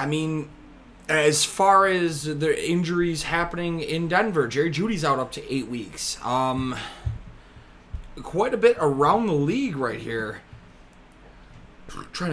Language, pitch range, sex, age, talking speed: English, 115-165 Hz, male, 20-39, 130 wpm